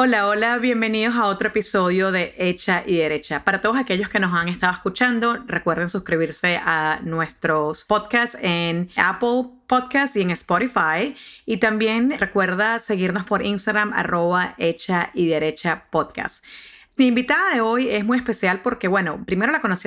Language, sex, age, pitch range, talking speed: English, female, 30-49, 175-220 Hz, 155 wpm